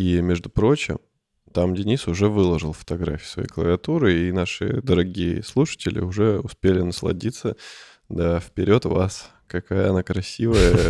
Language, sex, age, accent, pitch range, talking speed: Russian, male, 20-39, native, 90-110 Hz, 125 wpm